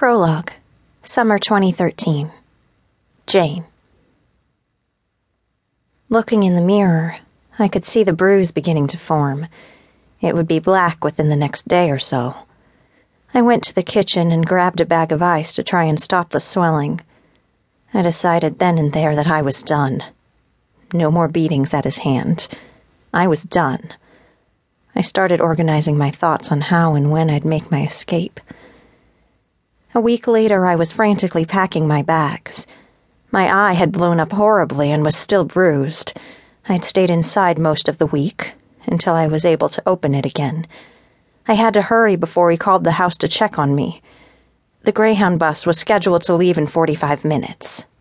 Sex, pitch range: female, 155-185 Hz